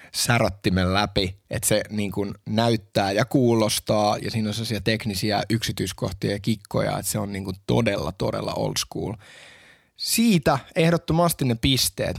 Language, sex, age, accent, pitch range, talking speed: Finnish, male, 20-39, native, 100-125 Hz, 150 wpm